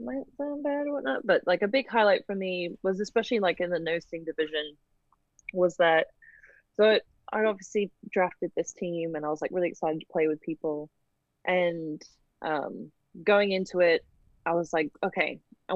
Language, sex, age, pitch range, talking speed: English, female, 20-39, 155-190 Hz, 180 wpm